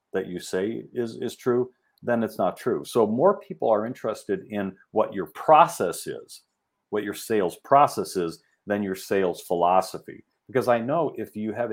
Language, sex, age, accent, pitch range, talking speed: English, male, 40-59, American, 95-115 Hz, 180 wpm